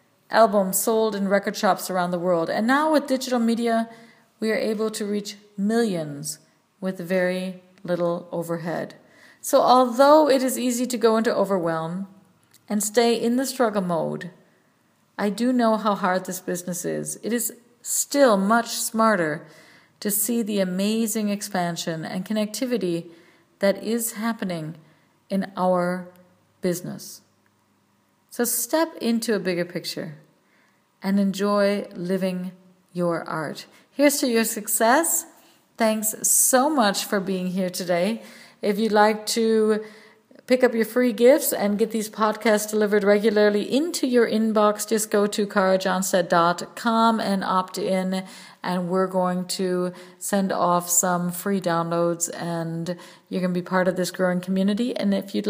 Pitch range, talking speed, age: 180-225 Hz, 145 wpm, 50-69